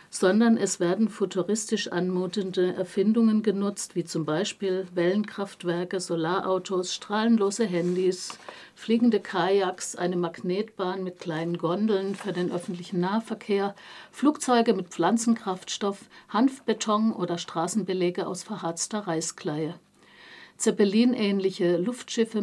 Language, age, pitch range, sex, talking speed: German, 60-79, 180-215 Hz, female, 95 wpm